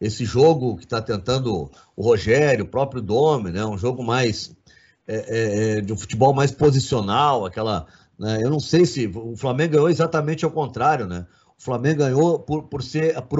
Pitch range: 120-165 Hz